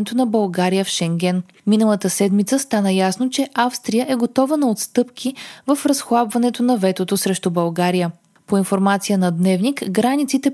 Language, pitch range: Bulgarian, 190-255 Hz